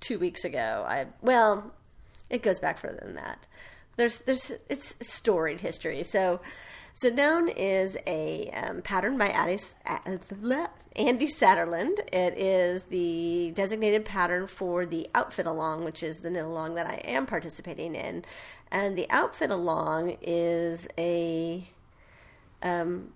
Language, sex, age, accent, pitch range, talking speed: English, female, 40-59, American, 170-215 Hz, 140 wpm